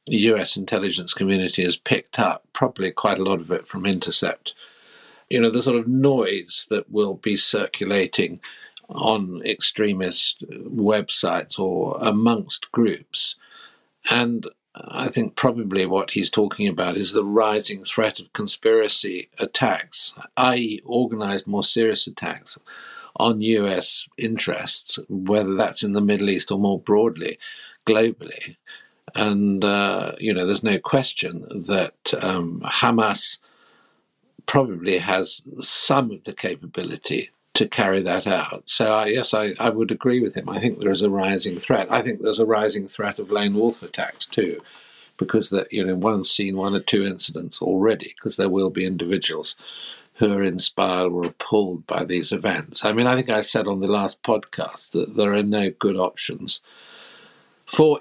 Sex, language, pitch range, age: male, English, 95-115 Hz, 50-69